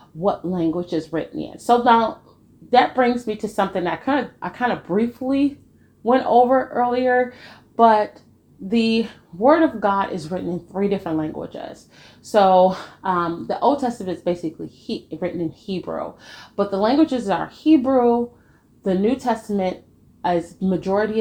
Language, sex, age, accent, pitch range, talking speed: English, female, 30-49, American, 170-230 Hz, 155 wpm